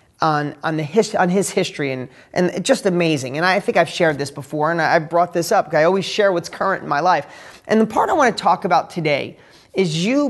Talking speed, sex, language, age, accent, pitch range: 245 wpm, male, English, 30-49, American, 165-230 Hz